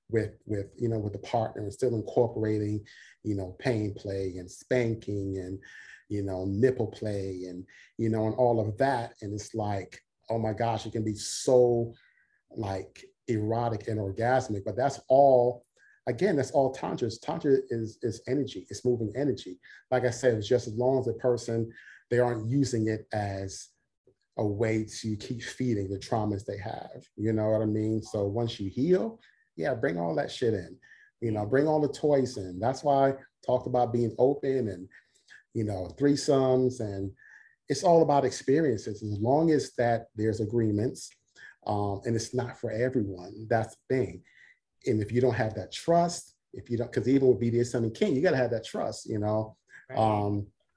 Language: English